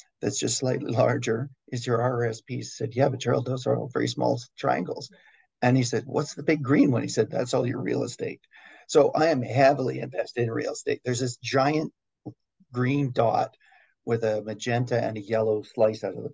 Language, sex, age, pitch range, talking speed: English, male, 40-59, 110-140 Hz, 200 wpm